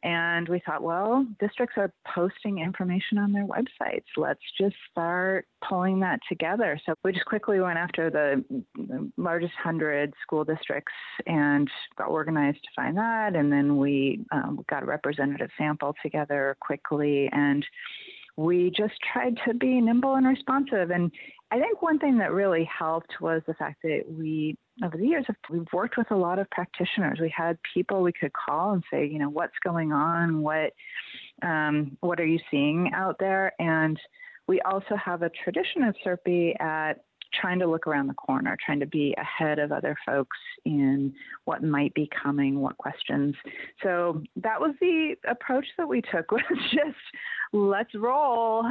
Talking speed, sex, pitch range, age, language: 170 wpm, female, 155-215 Hz, 30-49, English